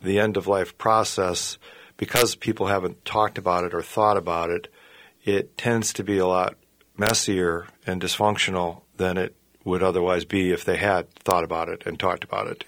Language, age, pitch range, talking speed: English, 40-59, 90-105 Hz, 185 wpm